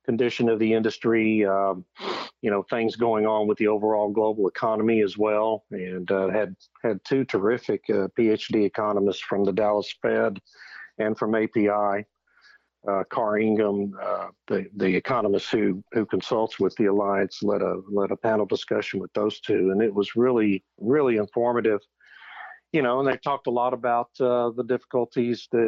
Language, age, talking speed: English, 50-69, 170 wpm